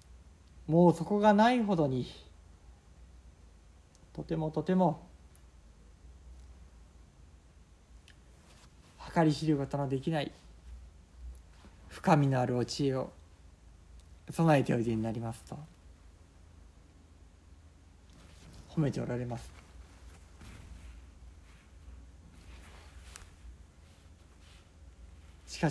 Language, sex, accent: Japanese, male, native